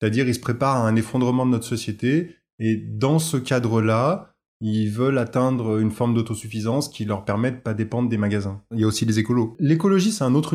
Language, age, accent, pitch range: French, 20-39, French, 110-135 Hz